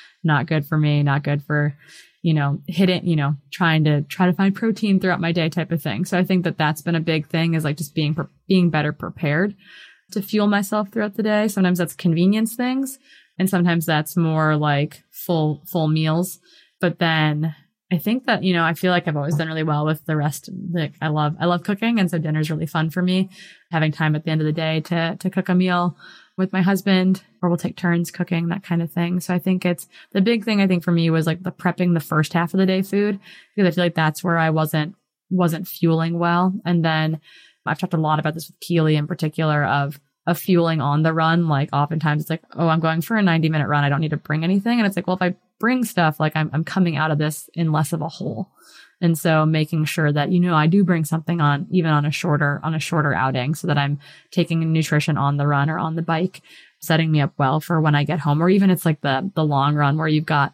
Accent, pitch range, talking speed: American, 155-180 Hz, 255 wpm